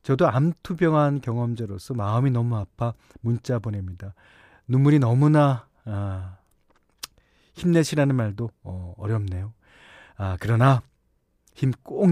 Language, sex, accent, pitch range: Korean, male, native, 105-155 Hz